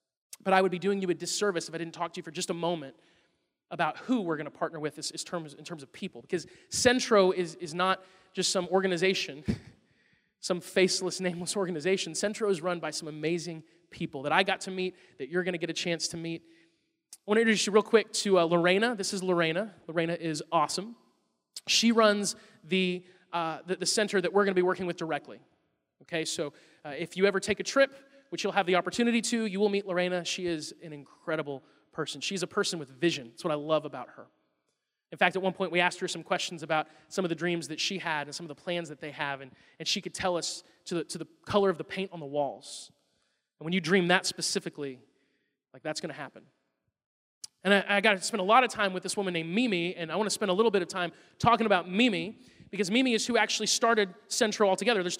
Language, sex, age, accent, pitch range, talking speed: English, male, 30-49, American, 165-200 Hz, 230 wpm